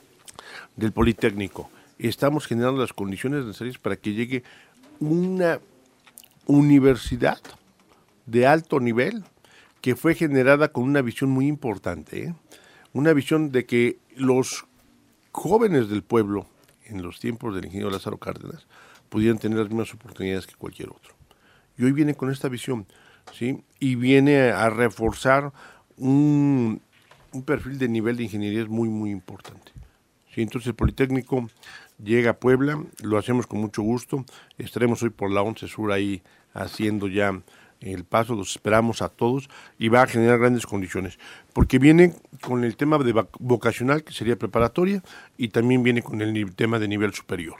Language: Spanish